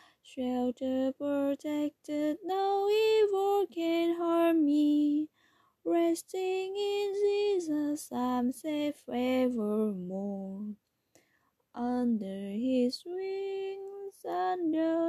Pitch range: 225-345 Hz